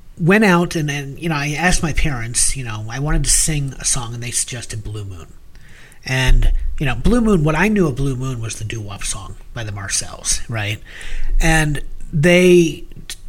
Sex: male